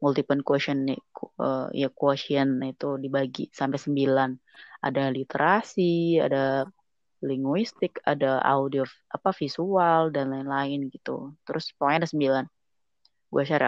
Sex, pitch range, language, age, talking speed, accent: female, 140-165 Hz, Indonesian, 20-39, 120 wpm, native